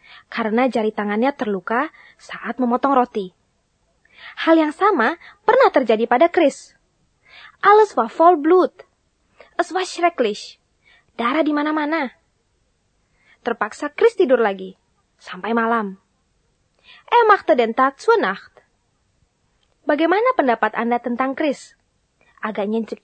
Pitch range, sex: 230-335 Hz, female